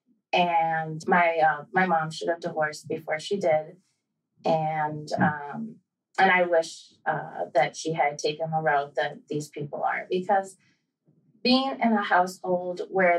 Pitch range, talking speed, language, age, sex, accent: 160-190 Hz, 150 wpm, English, 30-49, female, American